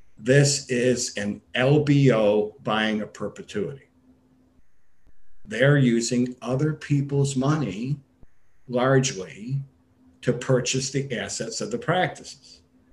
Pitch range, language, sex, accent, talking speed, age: 105-130 Hz, English, male, American, 95 wpm, 50-69